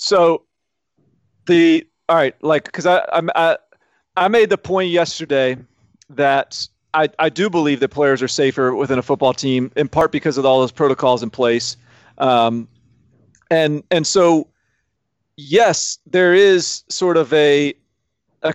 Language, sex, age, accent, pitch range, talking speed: English, male, 40-59, American, 135-165 Hz, 150 wpm